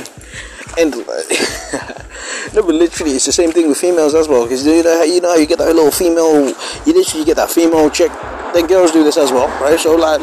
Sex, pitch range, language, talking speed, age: male, 125-170 Hz, English, 230 wpm, 20-39